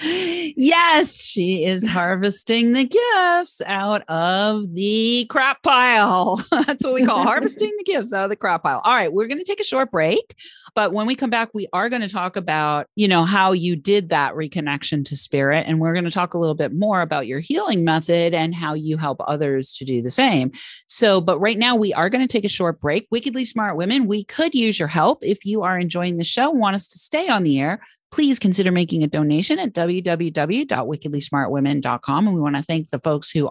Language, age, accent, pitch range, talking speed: English, 40-59, American, 155-235 Hz, 220 wpm